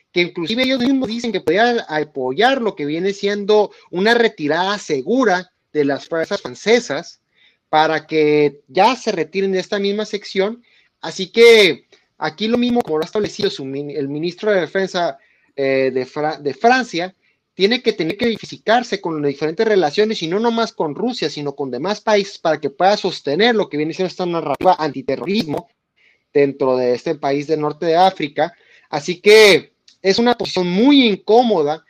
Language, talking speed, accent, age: Spanish, 165 wpm, Mexican, 30-49